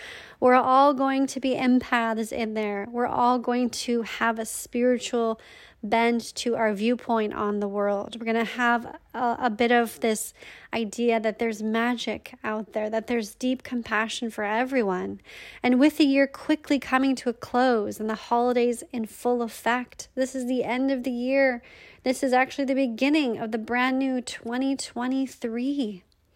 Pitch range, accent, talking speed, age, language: 225-255 Hz, American, 170 wpm, 30-49, English